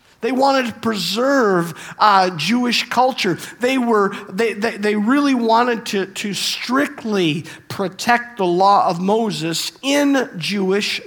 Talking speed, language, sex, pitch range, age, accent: 120 wpm, English, male, 175-235 Hz, 50-69, American